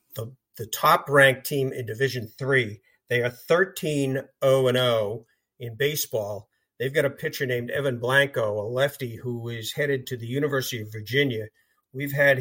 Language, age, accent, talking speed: English, 50-69, American, 150 wpm